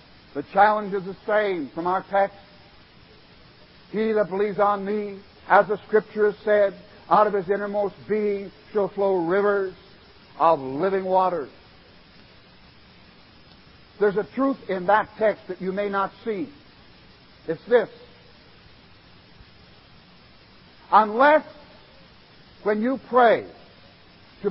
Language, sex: English, male